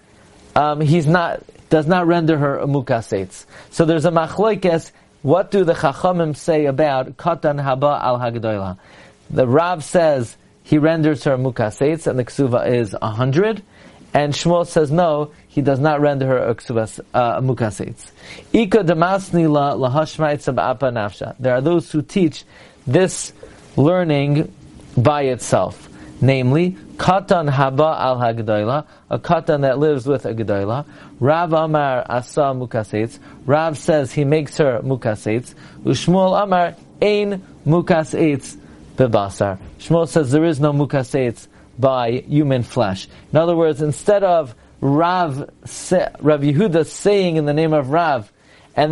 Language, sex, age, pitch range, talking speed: English, male, 40-59, 130-165 Hz, 130 wpm